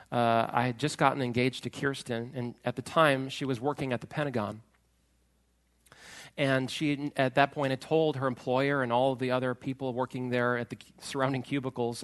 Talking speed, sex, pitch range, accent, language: 195 wpm, male, 125-180 Hz, American, English